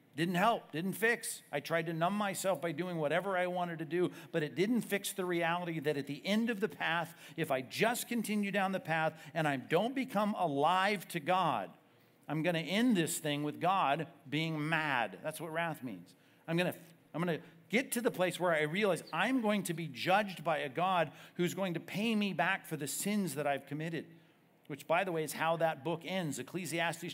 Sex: male